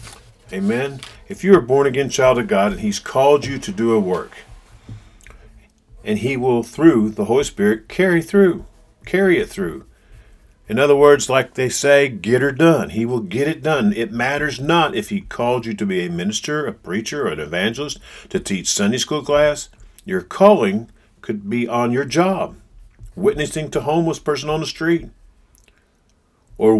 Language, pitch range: English, 115-190 Hz